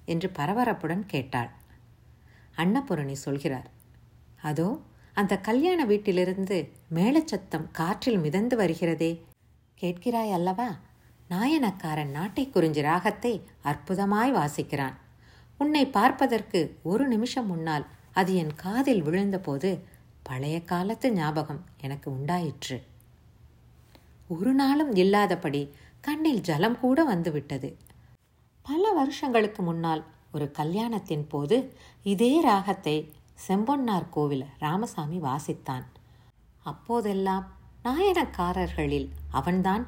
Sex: female